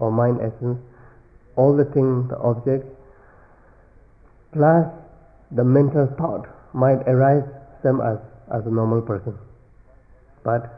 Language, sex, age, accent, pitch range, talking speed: English, male, 50-69, Indian, 115-135 Hz, 115 wpm